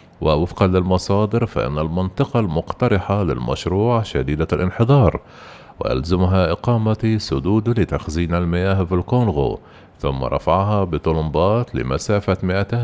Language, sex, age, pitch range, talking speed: Arabic, male, 50-69, 85-110 Hz, 95 wpm